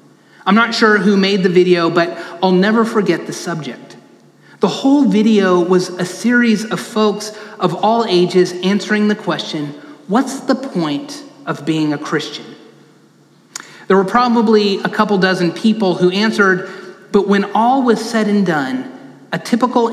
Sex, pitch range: male, 185-230 Hz